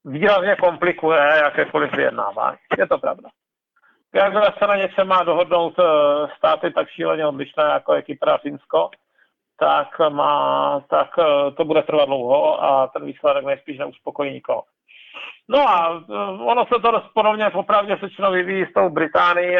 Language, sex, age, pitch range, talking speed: Czech, male, 50-69, 145-190 Hz, 145 wpm